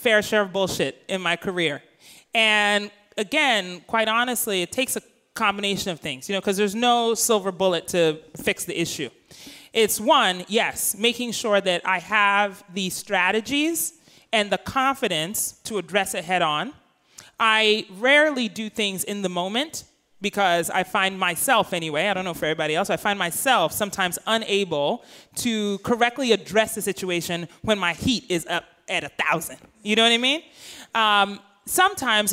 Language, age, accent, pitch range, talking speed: English, 30-49, American, 180-225 Hz, 165 wpm